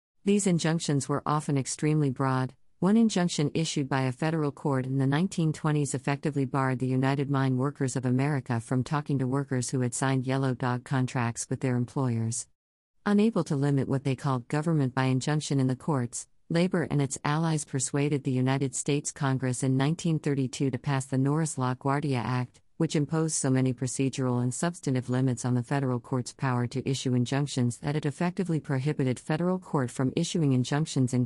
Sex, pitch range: female, 130-150 Hz